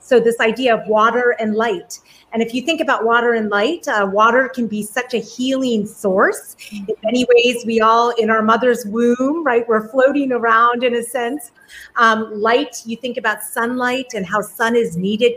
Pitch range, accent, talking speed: 205-245 Hz, American, 195 wpm